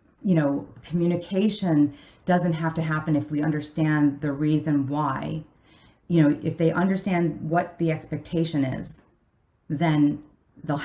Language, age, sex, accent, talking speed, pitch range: English, 40-59, female, American, 135 wpm, 145-170 Hz